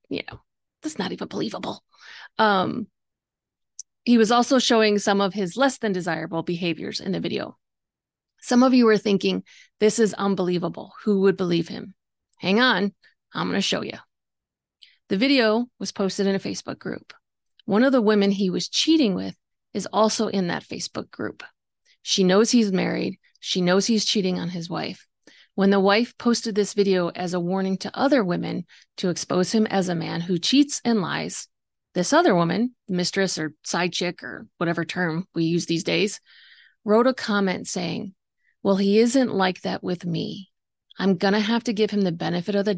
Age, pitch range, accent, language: 30-49, 180-220 Hz, American, English